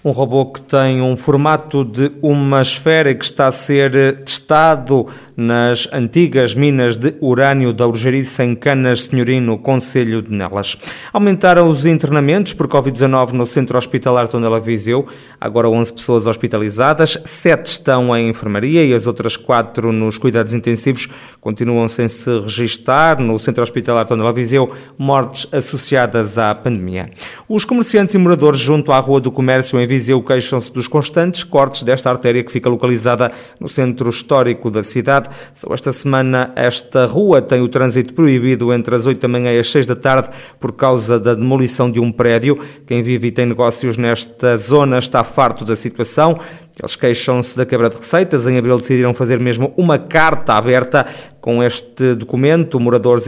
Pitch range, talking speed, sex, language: 120-140 Hz, 165 wpm, male, Portuguese